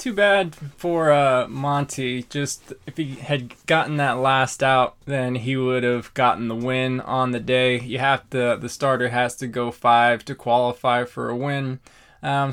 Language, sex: English, male